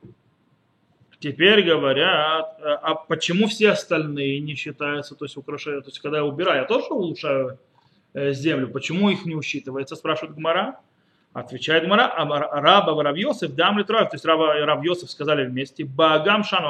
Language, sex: Russian, male